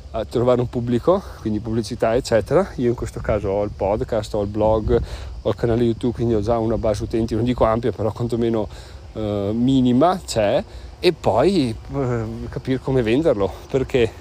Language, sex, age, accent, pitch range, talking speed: Italian, male, 40-59, native, 115-145 Hz, 175 wpm